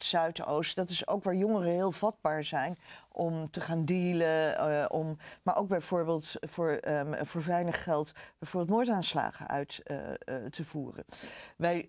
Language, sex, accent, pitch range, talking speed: Dutch, female, Dutch, 160-210 Hz, 160 wpm